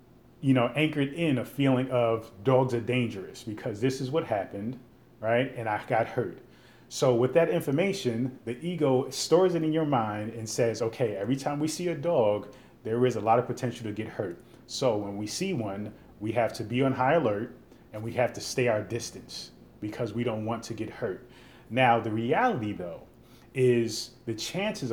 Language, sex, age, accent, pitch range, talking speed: English, male, 30-49, American, 115-135 Hz, 195 wpm